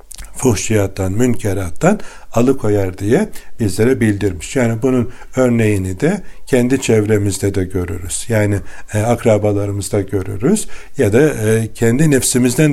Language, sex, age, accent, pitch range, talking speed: Turkish, male, 60-79, native, 100-125 Hz, 100 wpm